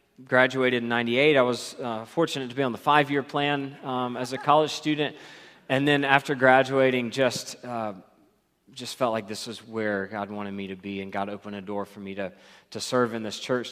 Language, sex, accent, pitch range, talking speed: English, male, American, 105-130 Hz, 210 wpm